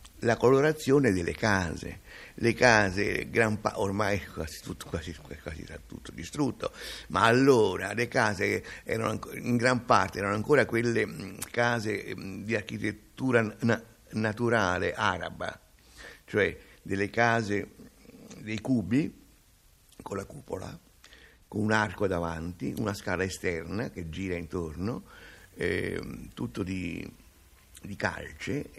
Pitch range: 100-120 Hz